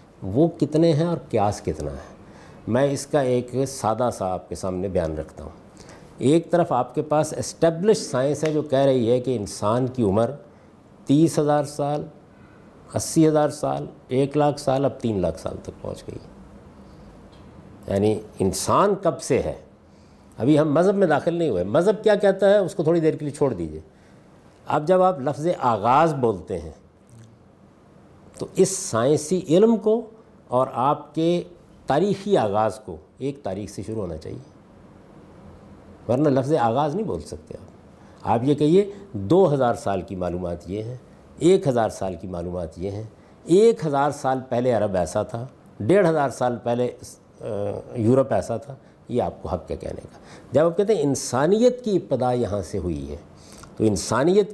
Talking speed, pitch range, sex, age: 175 wpm, 105-160 Hz, male, 50-69